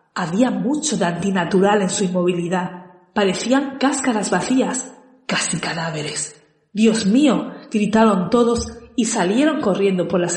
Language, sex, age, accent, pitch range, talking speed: Spanish, female, 40-59, Spanish, 185-240 Hz, 120 wpm